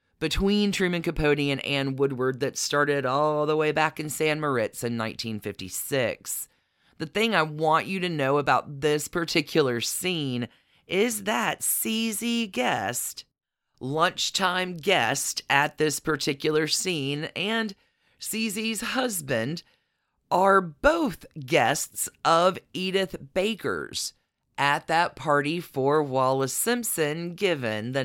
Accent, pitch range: American, 140-195 Hz